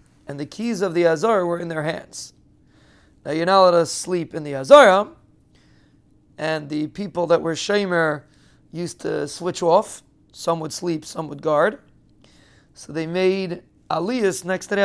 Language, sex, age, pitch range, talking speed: English, male, 30-49, 150-190 Hz, 170 wpm